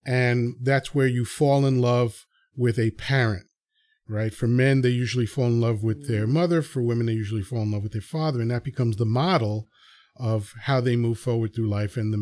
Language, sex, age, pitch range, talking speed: English, male, 40-59, 115-155 Hz, 220 wpm